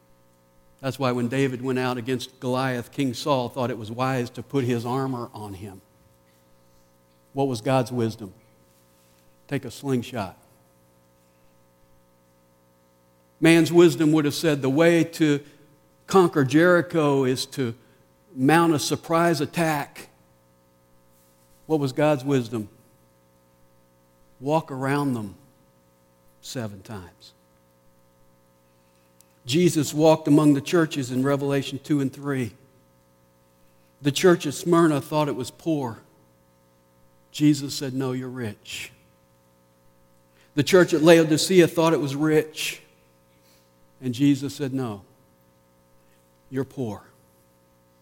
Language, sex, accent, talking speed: English, male, American, 110 wpm